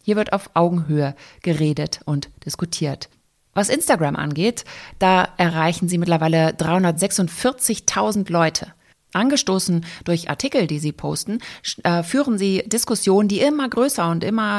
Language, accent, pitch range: German, German, 165-220 Hz